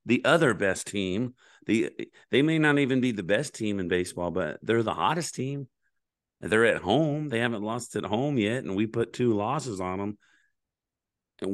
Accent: American